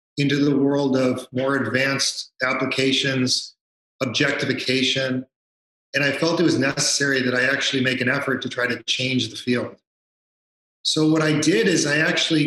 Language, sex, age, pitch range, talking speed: English, male, 40-59, 125-155 Hz, 160 wpm